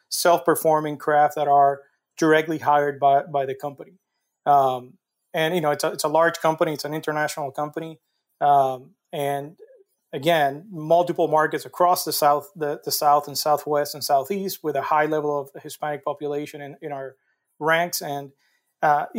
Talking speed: 165 wpm